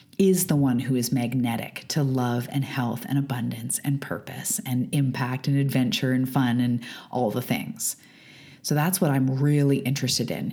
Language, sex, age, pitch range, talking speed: English, female, 30-49, 125-155 Hz, 175 wpm